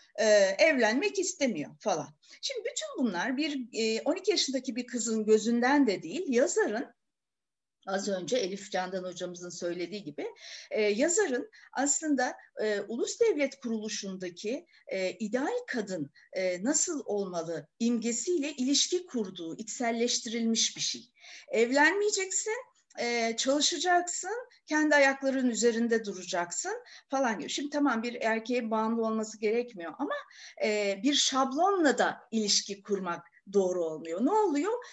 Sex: female